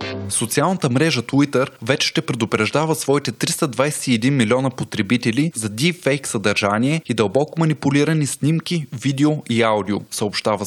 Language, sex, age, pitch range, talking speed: Bulgarian, male, 20-39, 115-150 Hz, 120 wpm